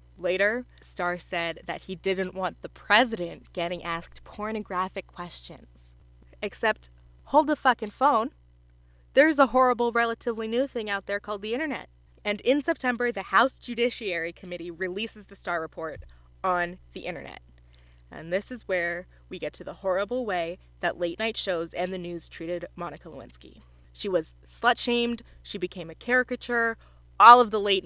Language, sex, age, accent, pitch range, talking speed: English, female, 20-39, American, 165-215 Hz, 160 wpm